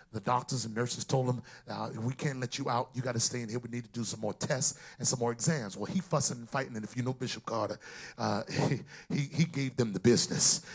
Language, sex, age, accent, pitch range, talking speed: English, male, 40-59, American, 120-145 Hz, 260 wpm